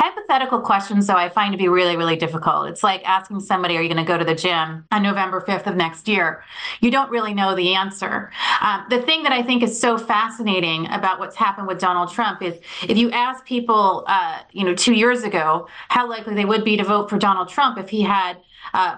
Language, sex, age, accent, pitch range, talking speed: English, female, 30-49, American, 190-235 Hz, 235 wpm